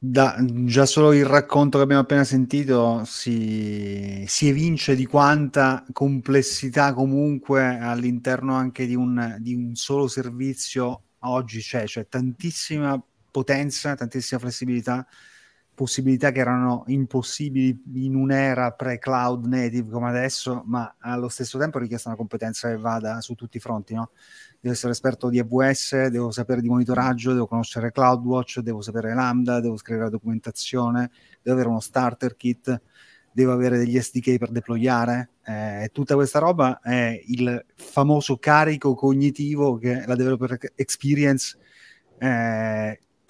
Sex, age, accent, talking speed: male, 30-49, native, 140 wpm